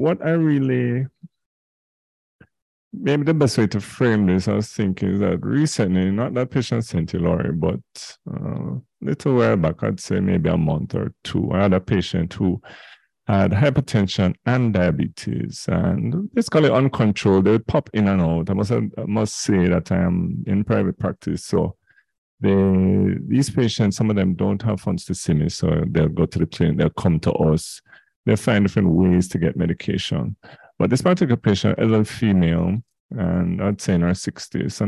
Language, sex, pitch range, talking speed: English, male, 95-125 Hz, 185 wpm